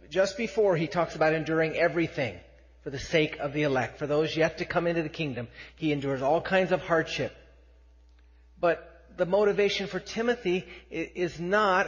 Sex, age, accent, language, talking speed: male, 50-69, American, English, 170 wpm